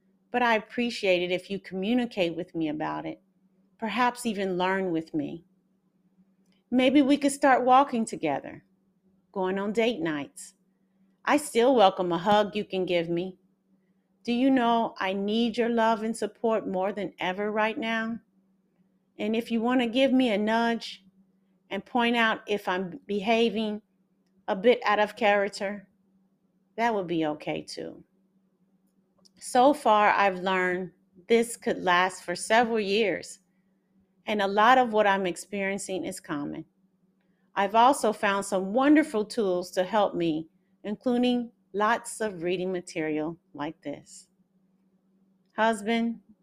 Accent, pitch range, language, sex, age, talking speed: American, 185-225 Hz, English, female, 40-59, 140 wpm